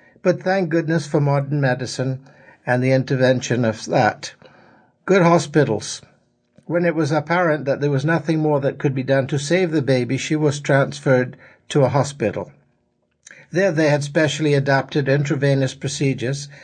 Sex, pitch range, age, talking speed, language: male, 130-155 Hz, 60-79, 155 wpm, English